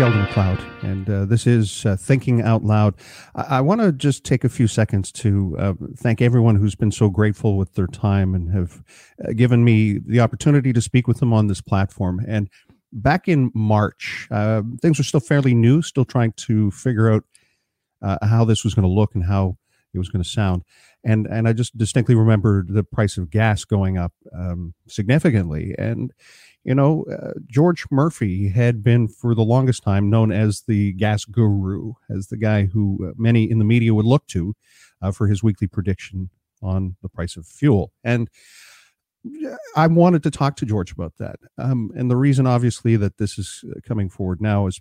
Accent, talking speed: American, 195 wpm